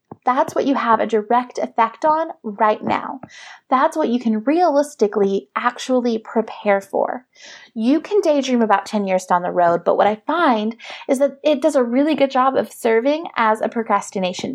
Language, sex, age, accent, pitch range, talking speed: English, female, 30-49, American, 215-285 Hz, 180 wpm